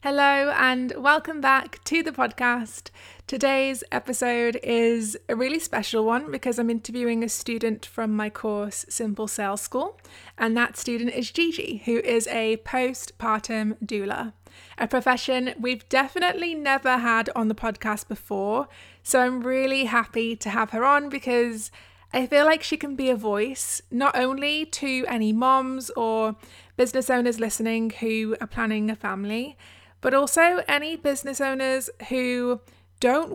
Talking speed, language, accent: 150 wpm, English, British